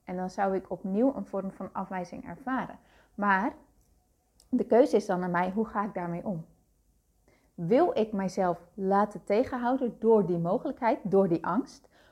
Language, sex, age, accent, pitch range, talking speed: Dutch, female, 30-49, Dutch, 195-245 Hz, 165 wpm